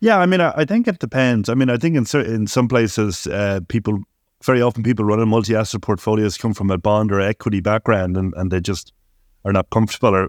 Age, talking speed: 30-49, 240 wpm